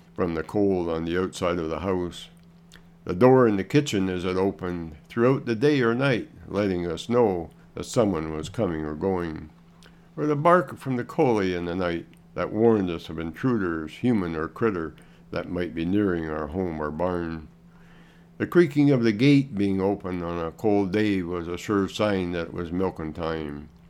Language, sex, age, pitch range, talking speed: English, male, 60-79, 85-120 Hz, 190 wpm